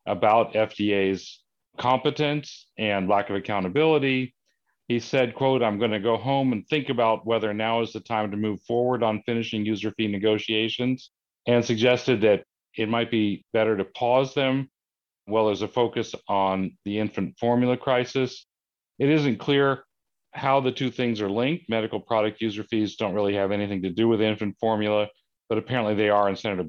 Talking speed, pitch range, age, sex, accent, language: 175 wpm, 105-125 Hz, 40-59, male, American, English